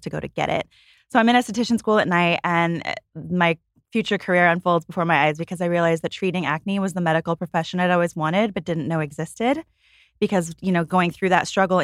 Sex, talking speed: female, 225 wpm